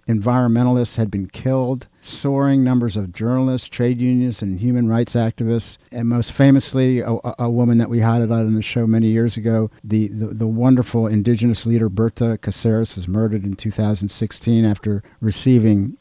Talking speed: 160 wpm